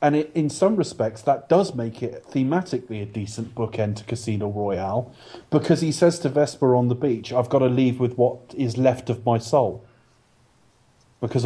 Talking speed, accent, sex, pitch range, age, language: 185 wpm, British, male, 115-135 Hz, 30-49, English